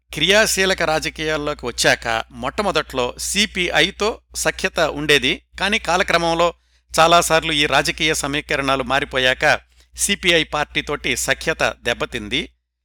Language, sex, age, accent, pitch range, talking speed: Telugu, male, 60-79, native, 110-165 Hz, 85 wpm